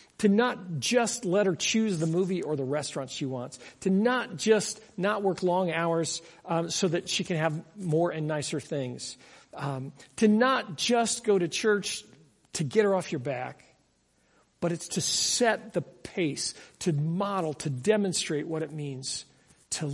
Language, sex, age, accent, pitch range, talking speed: English, male, 50-69, American, 150-200 Hz, 170 wpm